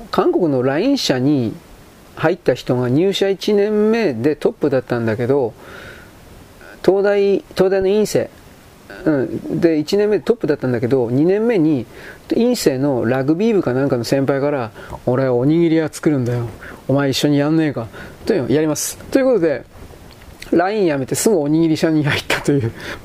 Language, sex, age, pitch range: Japanese, male, 40-59, 125-160 Hz